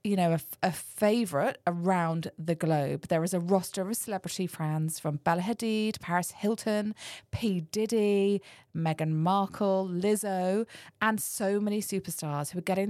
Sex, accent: female, British